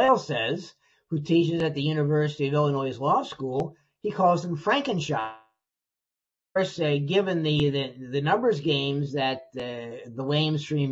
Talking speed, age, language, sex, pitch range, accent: 155 wpm, 50-69, English, male, 130-160 Hz, American